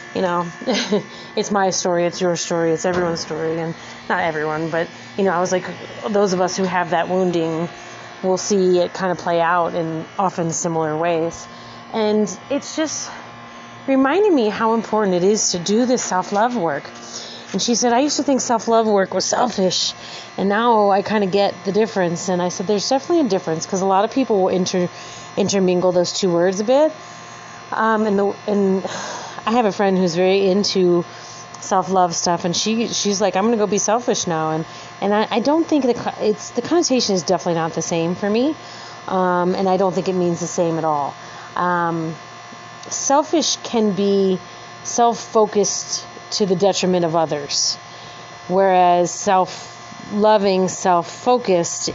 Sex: female